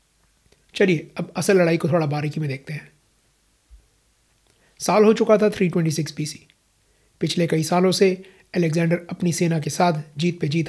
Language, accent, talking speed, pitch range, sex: Hindi, native, 155 wpm, 155-185 Hz, male